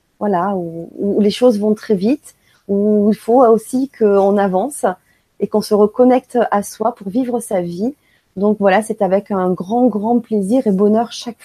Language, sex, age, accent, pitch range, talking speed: French, female, 30-49, French, 205-240 Hz, 185 wpm